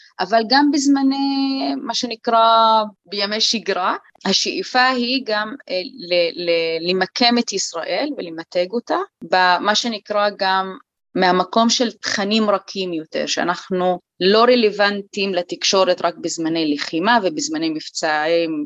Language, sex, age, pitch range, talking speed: Hebrew, female, 20-39, 175-220 Hz, 115 wpm